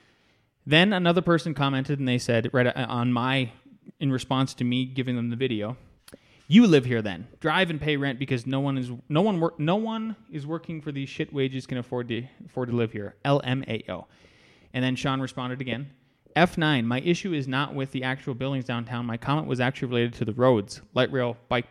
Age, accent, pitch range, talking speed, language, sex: 20-39, American, 120-145 Hz, 205 wpm, English, male